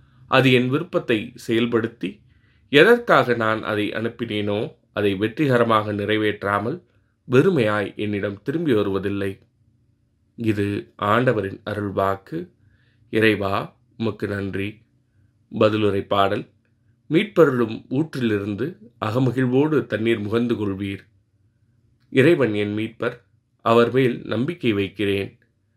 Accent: native